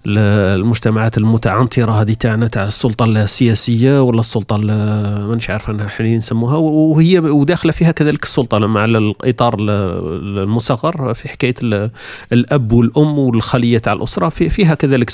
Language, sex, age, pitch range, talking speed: Arabic, male, 40-59, 110-145 Hz, 135 wpm